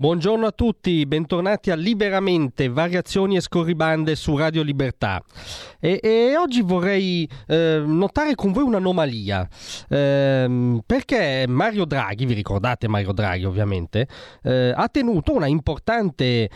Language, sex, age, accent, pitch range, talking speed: Italian, male, 30-49, native, 120-175 Hz, 125 wpm